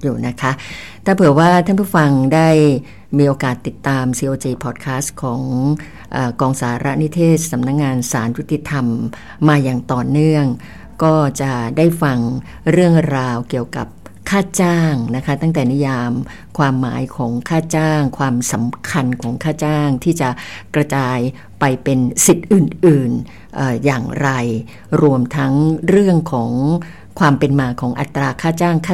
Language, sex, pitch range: English, female, 125-155 Hz